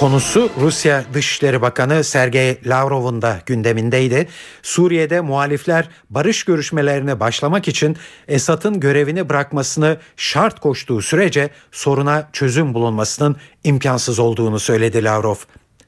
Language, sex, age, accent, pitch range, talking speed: Turkish, male, 50-69, native, 125-165 Hz, 100 wpm